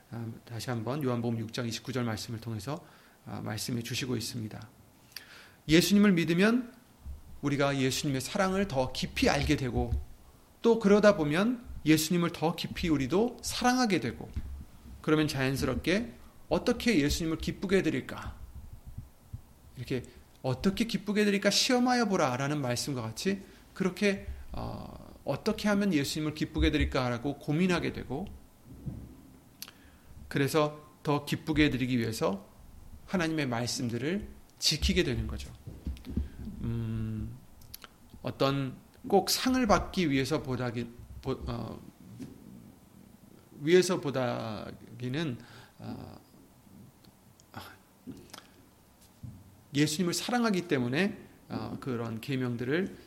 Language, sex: Korean, male